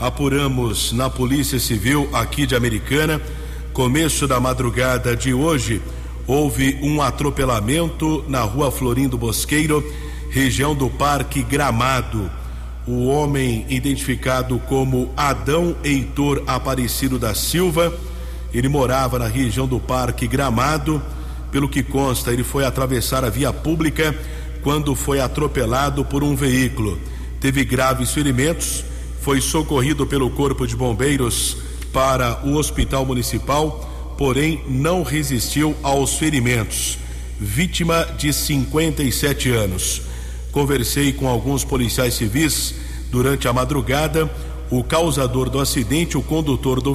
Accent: Brazilian